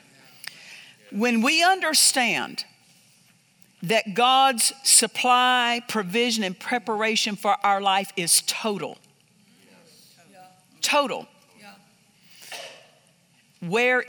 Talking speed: 70 wpm